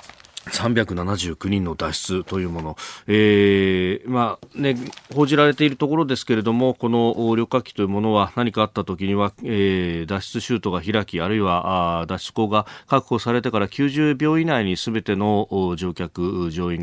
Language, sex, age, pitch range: Japanese, male, 40-59, 90-115 Hz